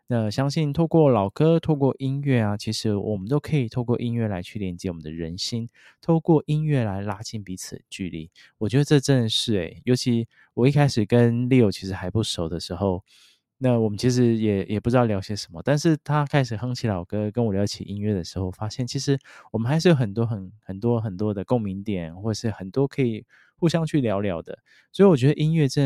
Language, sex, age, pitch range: Chinese, male, 20-39, 100-130 Hz